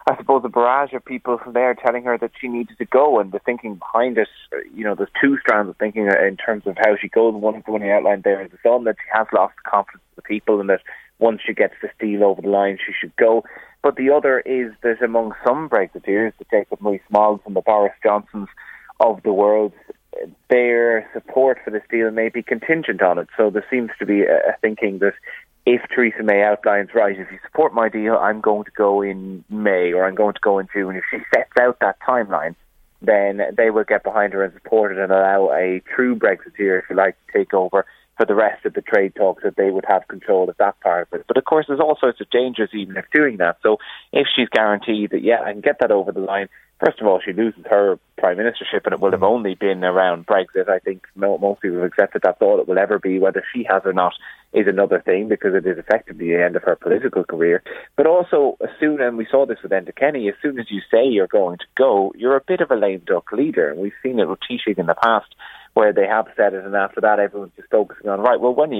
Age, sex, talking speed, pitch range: 30-49, male, 250 wpm, 100-125 Hz